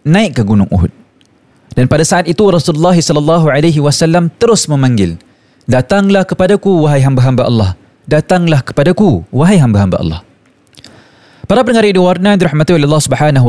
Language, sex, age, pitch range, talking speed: Malay, male, 20-39, 130-180 Hz, 130 wpm